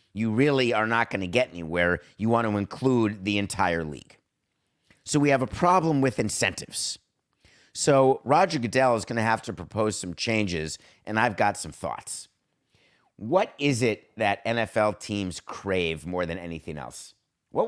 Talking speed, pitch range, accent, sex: 160 wpm, 95-125 Hz, American, male